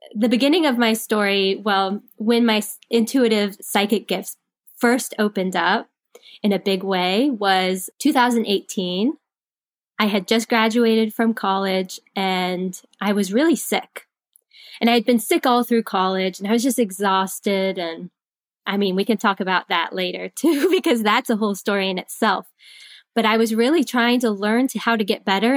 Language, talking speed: English, 170 wpm